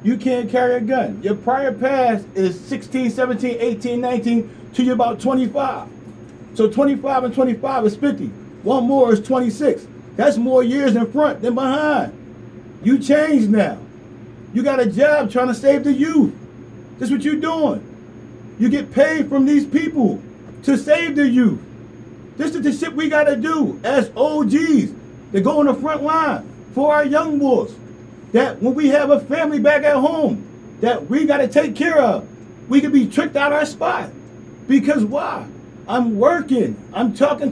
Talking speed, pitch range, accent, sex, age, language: 175 wpm, 250-290 Hz, American, male, 40-59, English